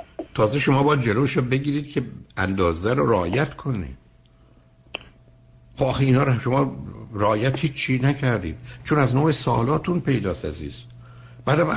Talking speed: 140 wpm